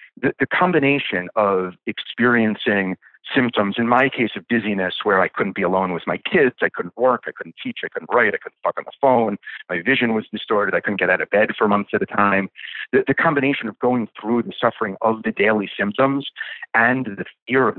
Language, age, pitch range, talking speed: English, 50-69, 105-135 Hz, 215 wpm